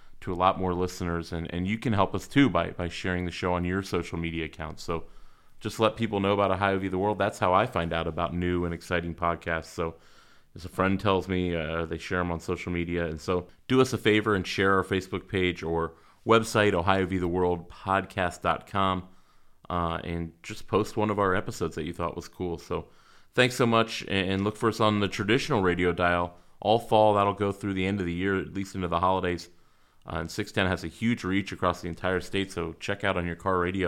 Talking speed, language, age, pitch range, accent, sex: 225 wpm, English, 30-49, 85-100 Hz, American, male